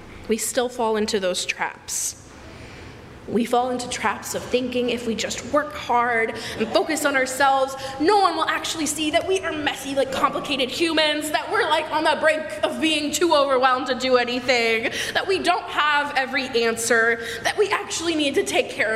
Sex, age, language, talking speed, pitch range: female, 20-39, English, 185 wpm, 235-320 Hz